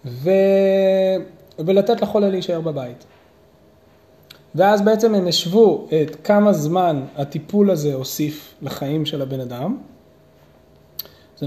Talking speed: 105 wpm